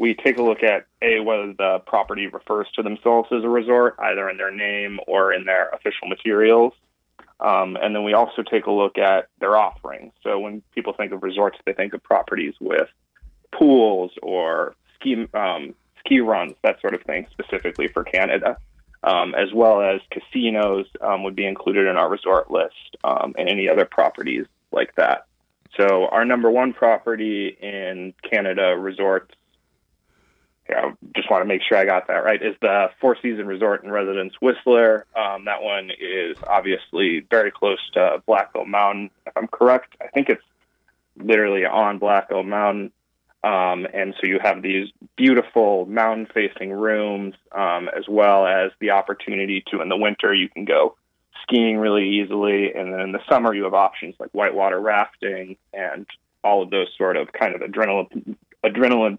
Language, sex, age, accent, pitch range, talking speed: English, male, 20-39, American, 100-115 Hz, 175 wpm